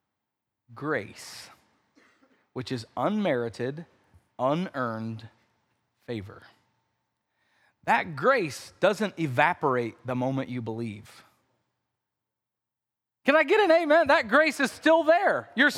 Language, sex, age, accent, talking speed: English, male, 30-49, American, 95 wpm